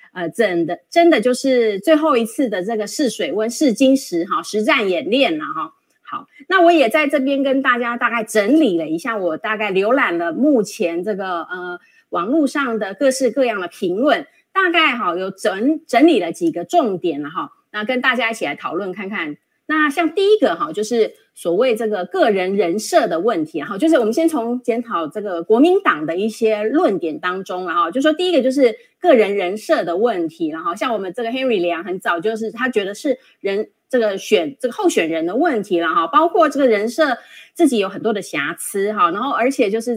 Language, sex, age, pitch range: Chinese, female, 30-49, 205-310 Hz